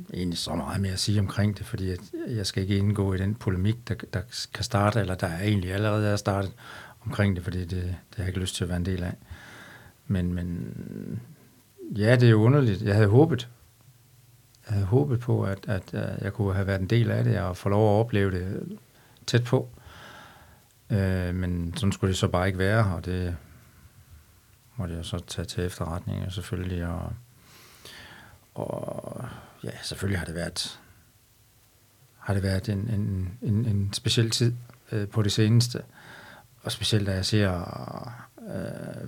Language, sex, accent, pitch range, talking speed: Danish, male, native, 95-115 Hz, 180 wpm